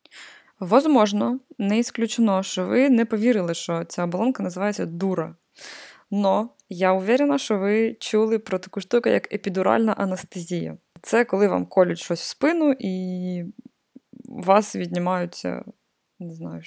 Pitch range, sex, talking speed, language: 175-225 Hz, female, 130 wpm, Ukrainian